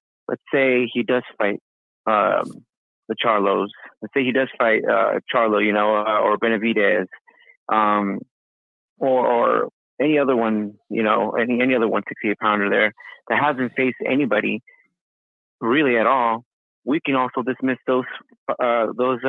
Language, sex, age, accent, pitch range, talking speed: English, male, 30-49, American, 110-135 Hz, 155 wpm